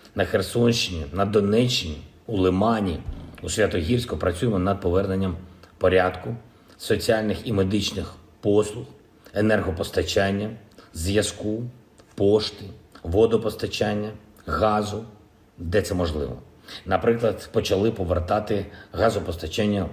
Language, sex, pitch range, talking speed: Ukrainian, male, 90-110 Hz, 85 wpm